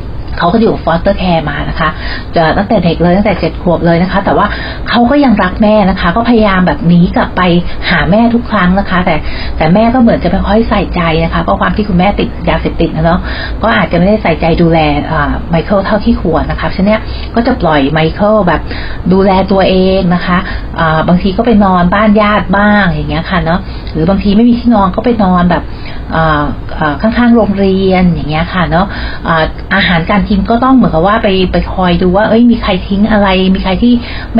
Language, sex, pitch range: Thai, female, 165-215 Hz